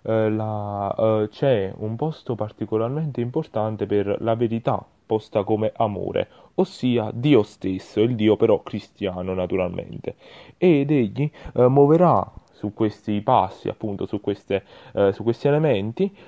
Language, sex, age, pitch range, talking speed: Italian, male, 30-49, 100-130 Hz, 110 wpm